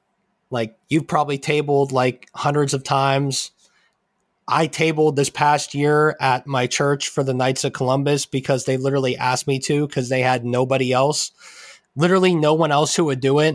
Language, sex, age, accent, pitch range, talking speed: English, male, 20-39, American, 130-150 Hz, 175 wpm